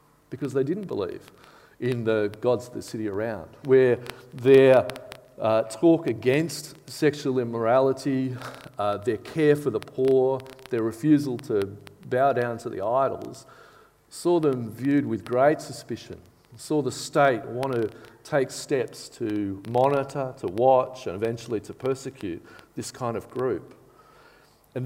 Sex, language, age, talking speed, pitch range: male, English, 40-59, 140 wpm, 110-140 Hz